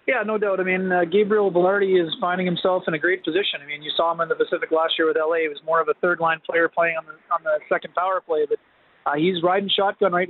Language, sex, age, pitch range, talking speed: English, male, 30-49, 160-180 Hz, 280 wpm